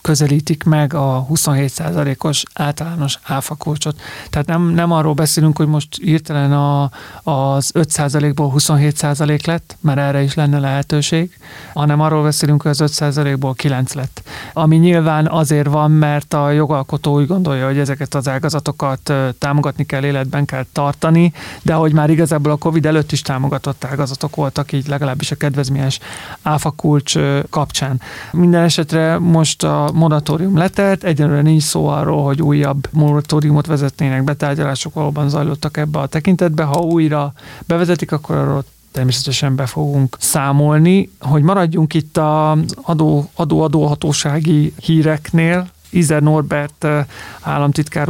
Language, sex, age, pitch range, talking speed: Hungarian, male, 30-49, 145-155 Hz, 130 wpm